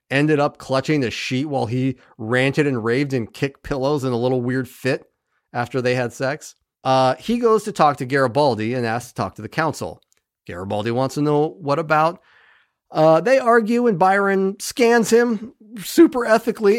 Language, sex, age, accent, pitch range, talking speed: English, male, 40-59, American, 130-195 Hz, 180 wpm